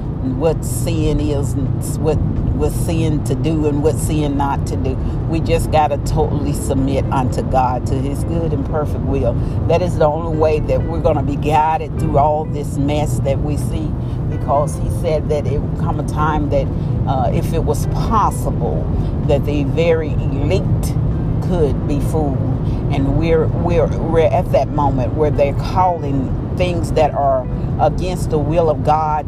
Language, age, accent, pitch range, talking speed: English, 40-59, American, 130-150 Hz, 180 wpm